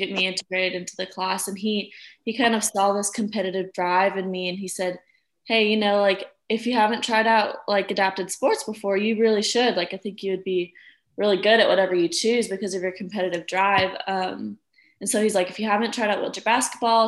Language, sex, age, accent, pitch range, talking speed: English, female, 20-39, American, 185-215 Hz, 230 wpm